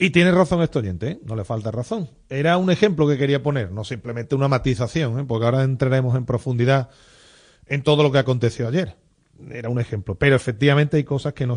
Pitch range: 130-170 Hz